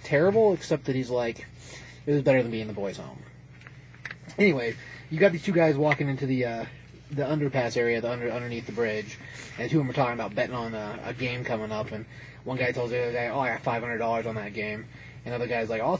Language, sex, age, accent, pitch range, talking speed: English, male, 30-49, American, 120-150 Hz, 255 wpm